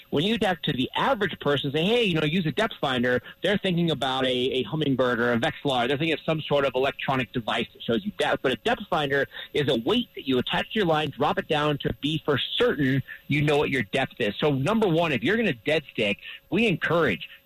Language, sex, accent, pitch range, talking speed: English, male, American, 130-175 Hz, 250 wpm